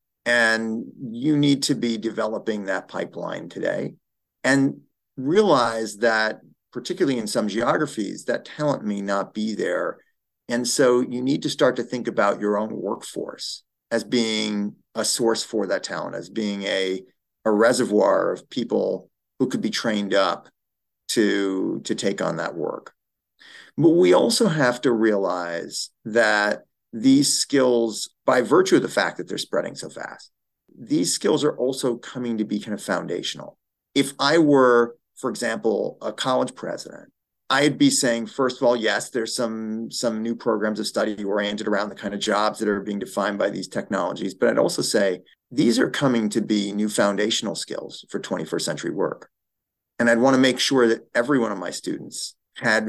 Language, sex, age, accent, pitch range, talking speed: English, male, 40-59, American, 105-125 Hz, 170 wpm